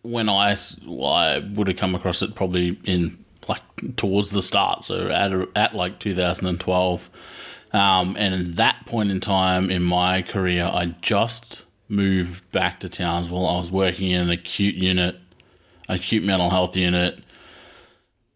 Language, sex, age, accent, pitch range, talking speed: English, male, 30-49, Australian, 90-105 Hz, 150 wpm